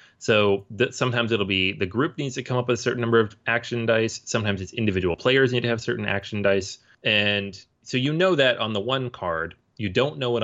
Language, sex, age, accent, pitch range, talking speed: English, male, 30-49, American, 95-125 Hz, 235 wpm